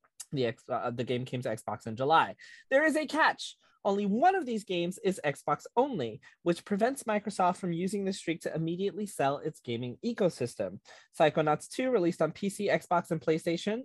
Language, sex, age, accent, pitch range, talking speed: English, male, 20-39, American, 145-210 Hz, 185 wpm